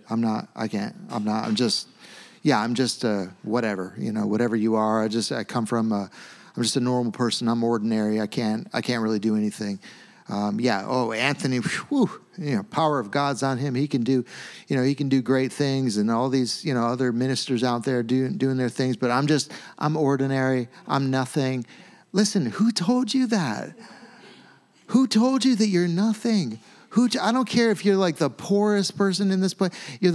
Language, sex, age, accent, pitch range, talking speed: English, male, 40-59, American, 130-220 Hz, 205 wpm